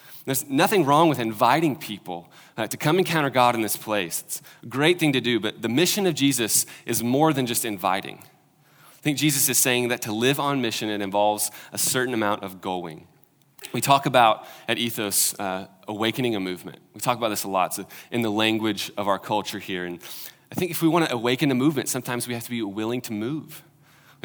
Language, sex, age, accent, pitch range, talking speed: English, male, 20-39, American, 110-140 Hz, 220 wpm